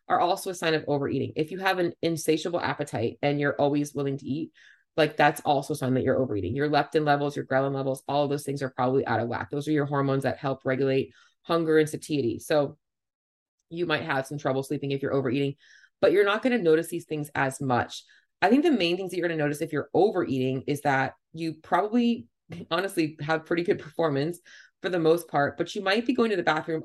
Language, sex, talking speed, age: English, female, 235 wpm, 30-49